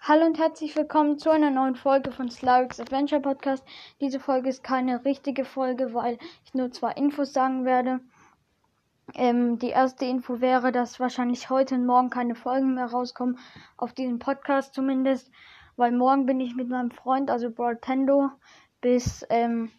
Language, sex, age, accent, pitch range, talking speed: German, female, 10-29, German, 245-275 Hz, 165 wpm